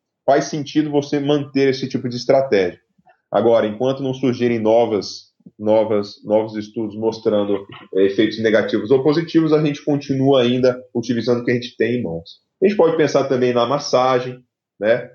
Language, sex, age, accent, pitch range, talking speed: Portuguese, male, 10-29, Brazilian, 105-130 Hz, 155 wpm